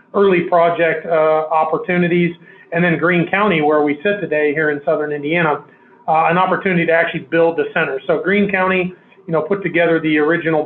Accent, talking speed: American, 185 wpm